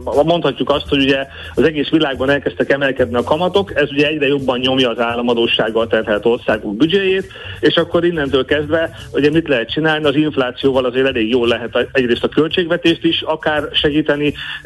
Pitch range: 125-155 Hz